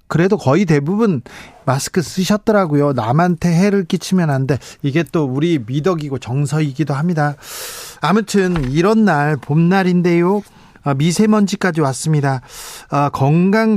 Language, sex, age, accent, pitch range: Korean, male, 40-59, native, 140-190 Hz